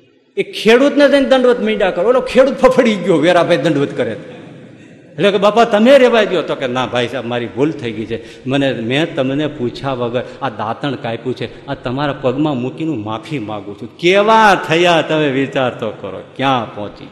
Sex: male